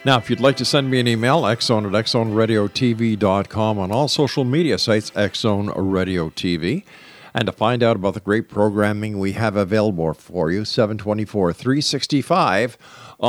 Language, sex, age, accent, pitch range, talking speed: English, male, 50-69, American, 95-120 Hz, 155 wpm